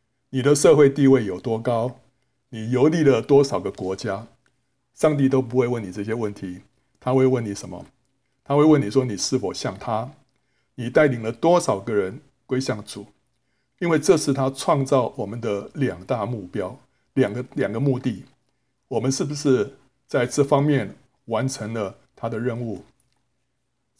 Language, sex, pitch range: Chinese, male, 120-140 Hz